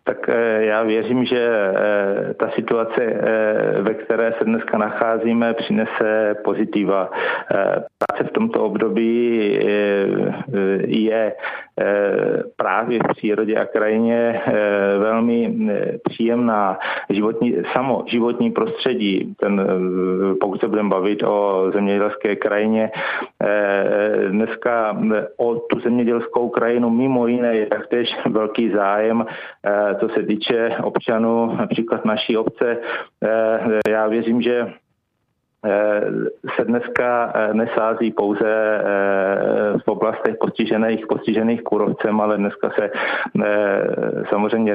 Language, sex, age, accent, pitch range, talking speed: Czech, male, 50-69, native, 105-115 Hz, 95 wpm